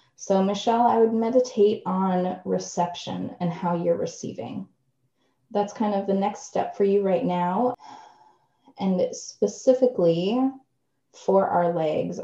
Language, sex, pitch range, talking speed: English, female, 165-205 Hz, 125 wpm